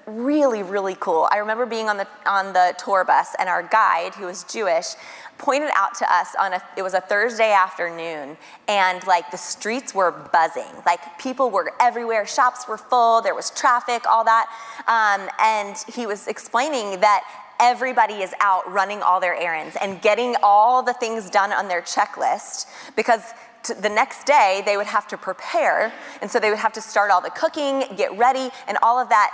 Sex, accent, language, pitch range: female, American, English, 205-255 Hz